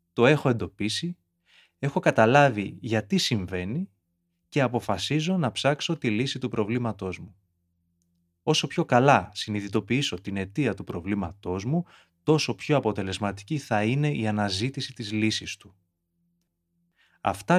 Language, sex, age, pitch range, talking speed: Greek, male, 20-39, 90-125 Hz, 125 wpm